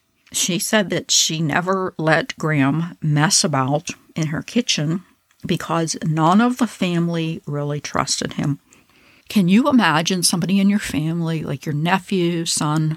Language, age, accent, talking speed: English, 60-79, American, 145 wpm